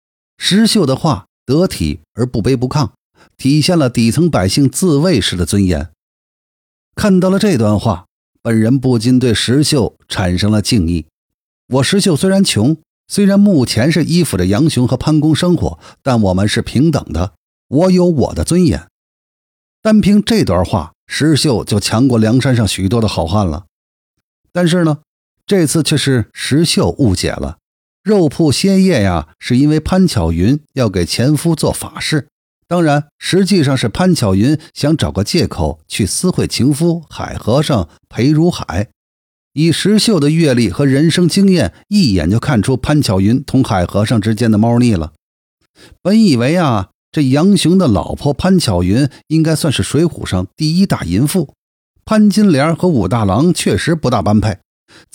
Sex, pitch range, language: male, 105-170 Hz, Chinese